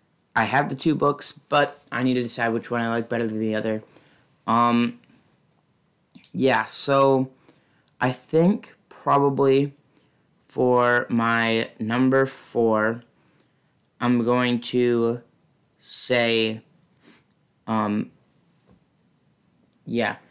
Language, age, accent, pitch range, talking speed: English, 20-39, American, 110-130 Hz, 100 wpm